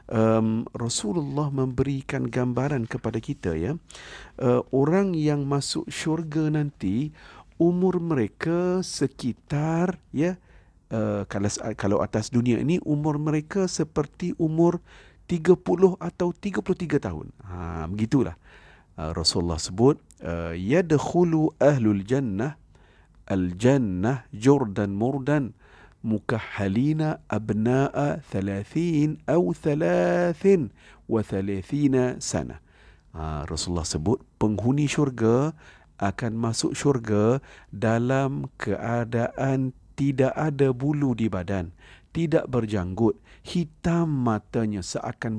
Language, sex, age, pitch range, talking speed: Malay, male, 50-69, 105-150 Hz, 100 wpm